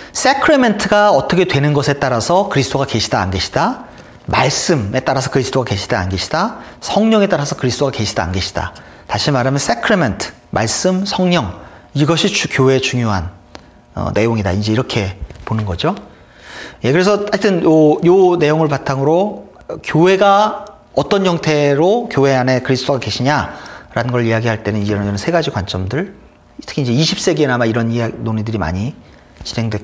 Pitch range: 105-180 Hz